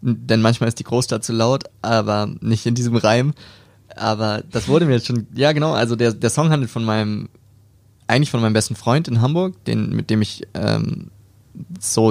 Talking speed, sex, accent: 200 wpm, male, German